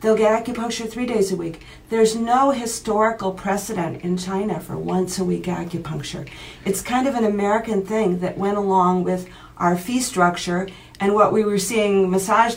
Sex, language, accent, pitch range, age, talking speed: female, English, American, 180-215 Hz, 50-69, 175 wpm